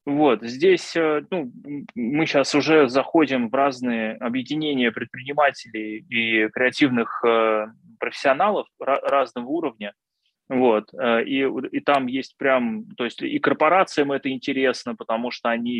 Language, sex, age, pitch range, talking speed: Russian, male, 20-39, 110-140 Hz, 125 wpm